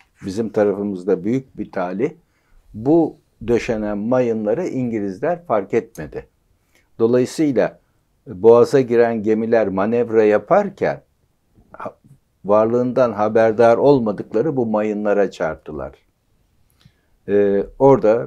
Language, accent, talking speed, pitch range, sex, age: Turkish, native, 80 wpm, 100-125 Hz, male, 60-79